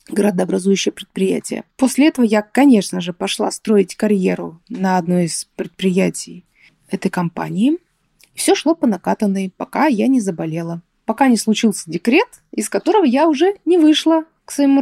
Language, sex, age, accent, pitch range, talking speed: Russian, female, 20-39, native, 195-275 Hz, 145 wpm